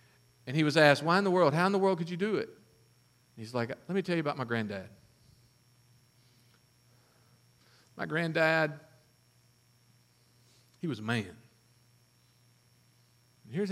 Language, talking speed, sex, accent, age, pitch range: English, 140 wpm, male, American, 40-59, 120-170 Hz